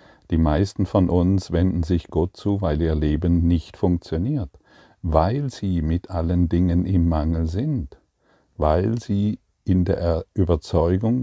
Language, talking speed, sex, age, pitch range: German, 140 wpm, male, 50-69, 85-100 Hz